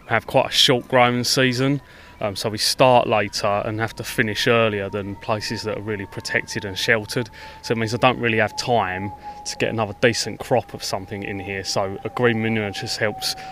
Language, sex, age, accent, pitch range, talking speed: English, male, 20-39, British, 100-120 Hz, 210 wpm